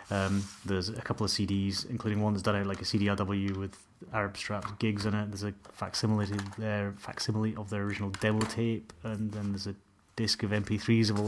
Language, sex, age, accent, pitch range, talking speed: English, male, 30-49, British, 100-115 Hz, 205 wpm